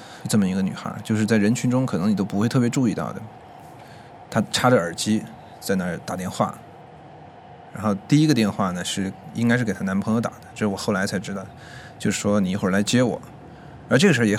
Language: Chinese